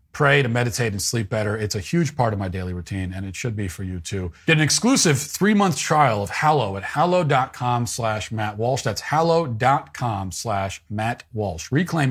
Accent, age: American, 40-59